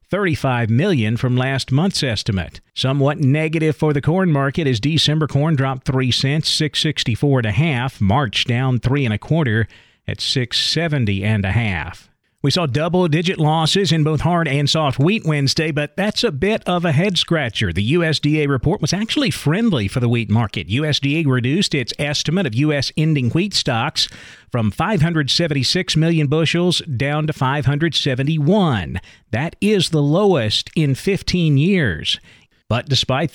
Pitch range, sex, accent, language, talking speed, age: 125-160 Hz, male, American, English, 160 wpm, 40-59